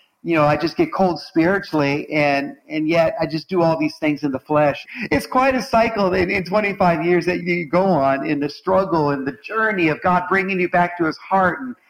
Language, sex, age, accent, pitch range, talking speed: English, male, 50-69, American, 155-195 Hz, 230 wpm